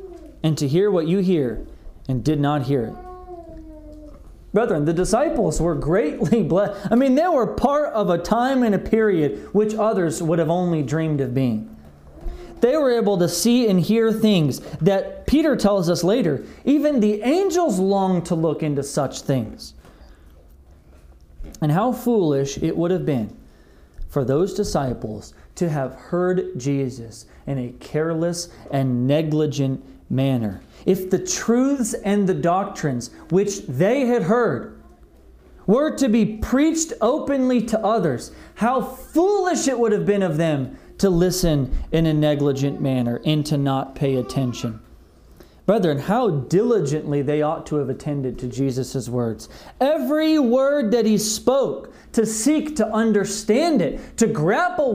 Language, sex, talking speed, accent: English, male, 150 wpm, American